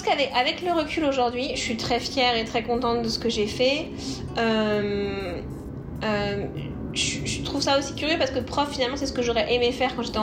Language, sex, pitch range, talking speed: French, female, 225-275 Hz, 210 wpm